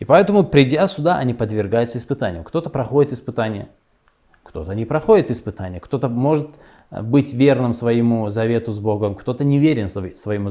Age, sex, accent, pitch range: 20-39, male, native, 100-125 Hz